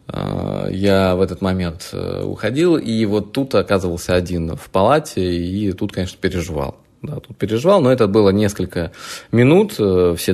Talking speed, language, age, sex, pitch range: 145 wpm, Russian, 20-39, male, 90-115 Hz